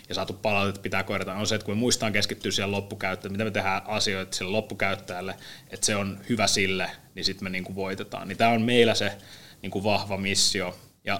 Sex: male